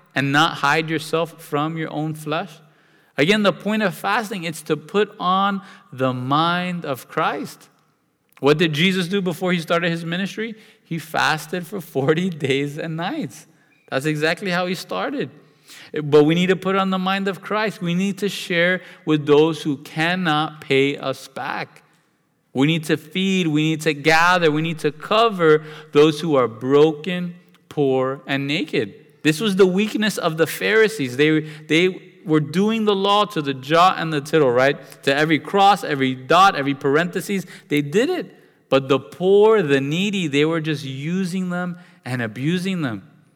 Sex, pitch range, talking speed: male, 145-180 Hz, 175 wpm